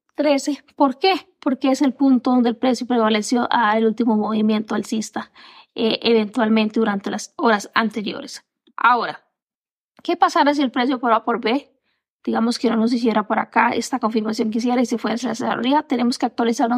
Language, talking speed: Spanish, 180 wpm